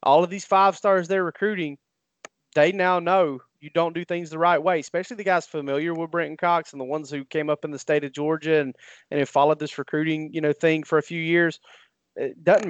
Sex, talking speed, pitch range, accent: male, 235 wpm, 150-175 Hz, American